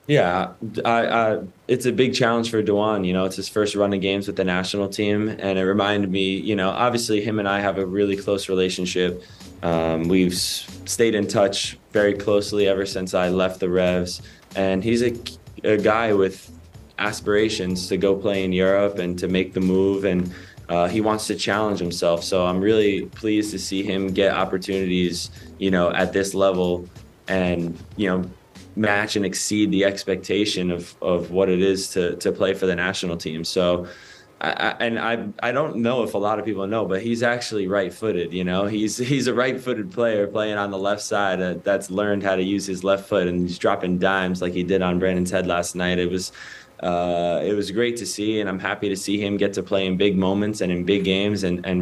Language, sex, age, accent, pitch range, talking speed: English, male, 20-39, American, 90-105 Hz, 215 wpm